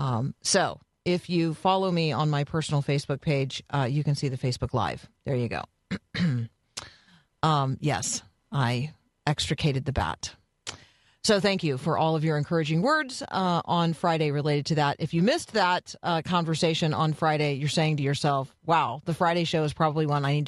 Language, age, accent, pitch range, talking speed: English, 40-59, American, 145-175 Hz, 185 wpm